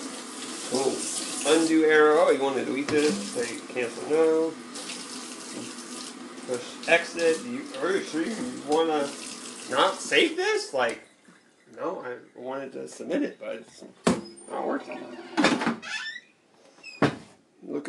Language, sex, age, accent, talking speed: English, male, 30-49, American, 115 wpm